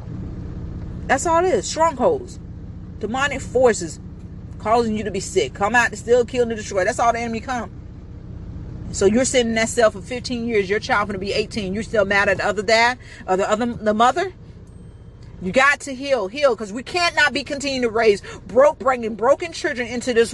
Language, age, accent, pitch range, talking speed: English, 40-59, American, 200-275 Hz, 205 wpm